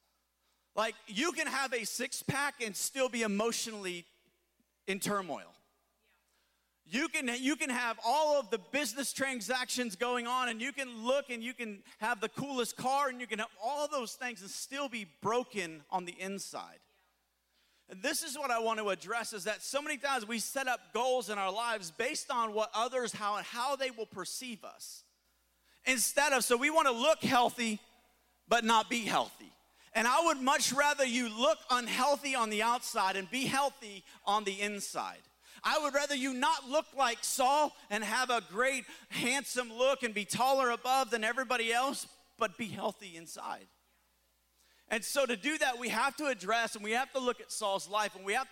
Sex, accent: male, American